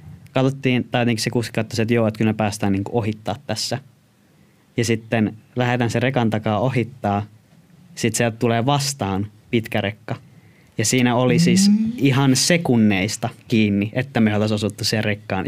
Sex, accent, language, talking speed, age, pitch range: male, native, Finnish, 150 wpm, 20-39, 105-125 Hz